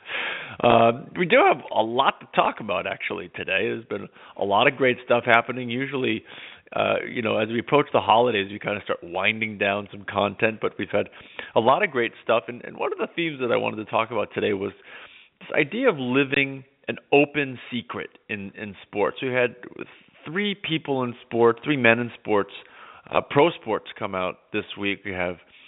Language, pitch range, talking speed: English, 105-130 Hz, 205 wpm